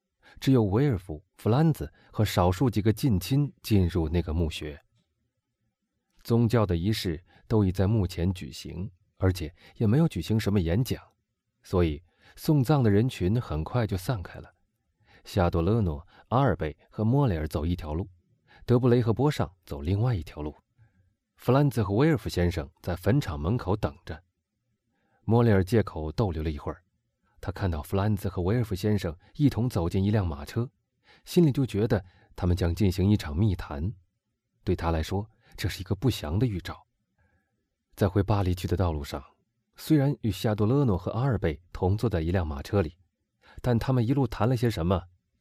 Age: 30-49